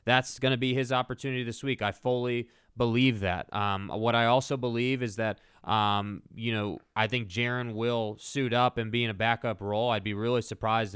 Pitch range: 110-130 Hz